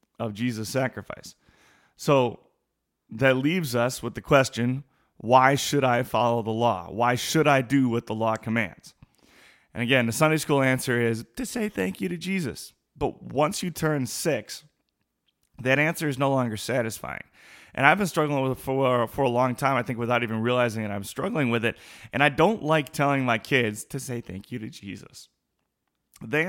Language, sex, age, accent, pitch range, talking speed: English, male, 30-49, American, 115-140 Hz, 190 wpm